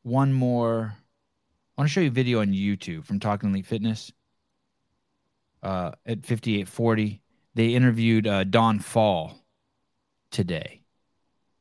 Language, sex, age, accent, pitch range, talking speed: English, male, 20-39, American, 100-125 Hz, 125 wpm